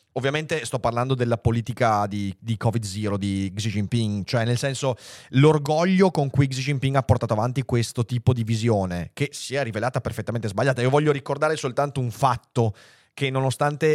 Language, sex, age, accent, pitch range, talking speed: Italian, male, 30-49, native, 110-130 Hz, 175 wpm